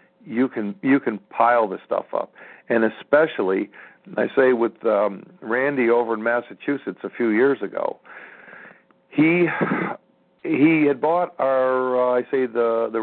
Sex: male